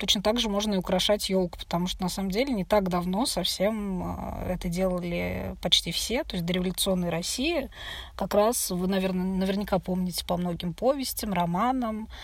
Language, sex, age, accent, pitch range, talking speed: Russian, female, 20-39, native, 180-215 Hz, 170 wpm